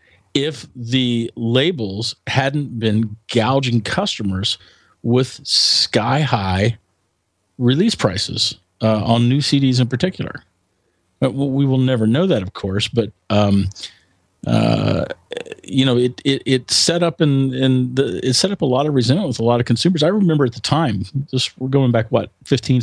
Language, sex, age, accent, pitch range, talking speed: English, male, 40-59, American, 105-135 Hz, 165 wpm